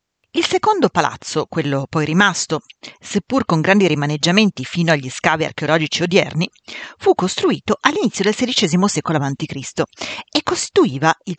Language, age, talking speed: Italian, 40-59, 130 wpm